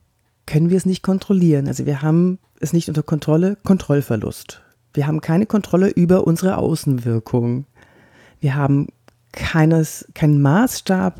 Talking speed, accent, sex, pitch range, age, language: 130 wpm, German, female, 125-200 Hz, 40-59, German